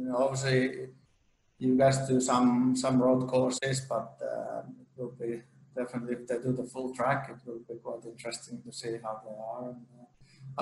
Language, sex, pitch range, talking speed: English, male, 120-130 Hz, 190 wpm